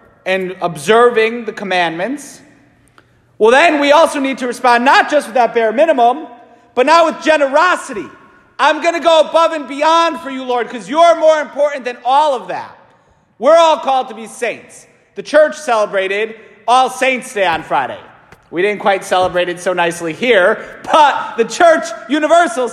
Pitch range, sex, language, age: 210-300 Hz, male, English, 40-59